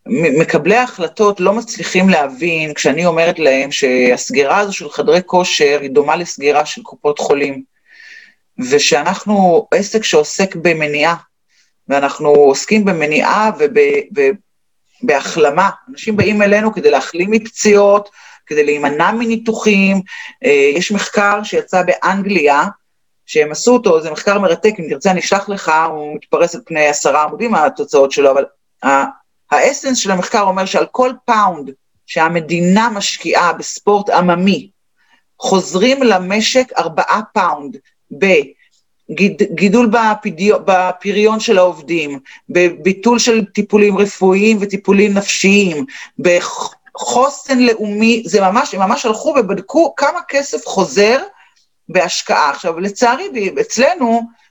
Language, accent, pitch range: Hebrew, native, 170-235 Hz